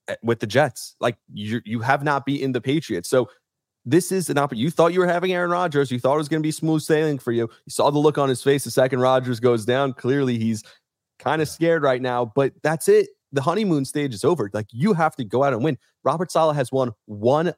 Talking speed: 255 wpm